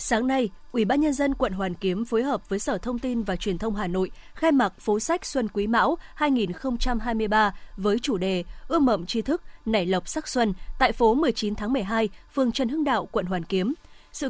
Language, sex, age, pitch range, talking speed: Vietnamese, female, 20-39, 205-260 Hz, 220 wpm